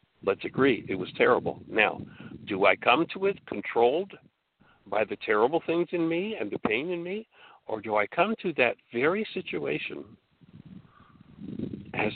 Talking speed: 160 wpm